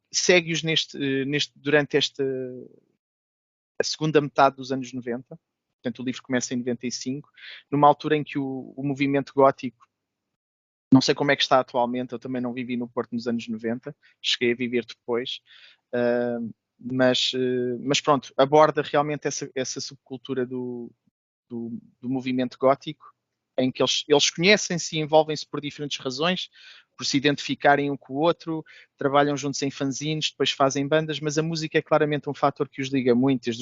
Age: 20-39